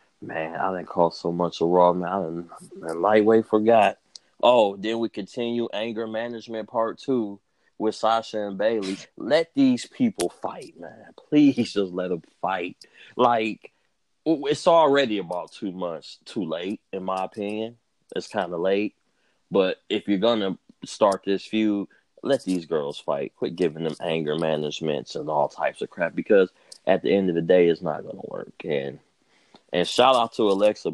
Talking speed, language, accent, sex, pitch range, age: 175 wpm, English, American, male, 90-110 Hz, 20-39